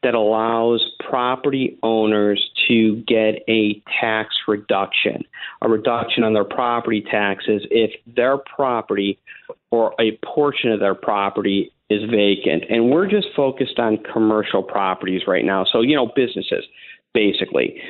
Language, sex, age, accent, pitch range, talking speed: English, male, 50-69, American, 110-125 Hz, 135 wpm